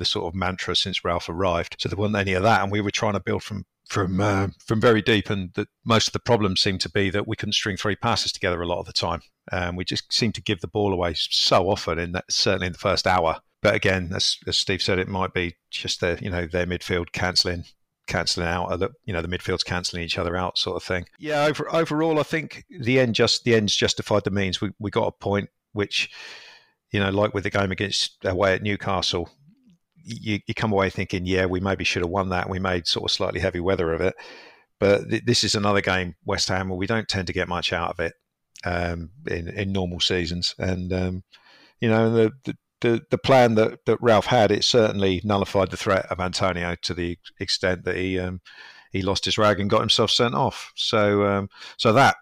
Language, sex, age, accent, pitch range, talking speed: English, male, 50-69, British, 90-110 Hz, 240 wpm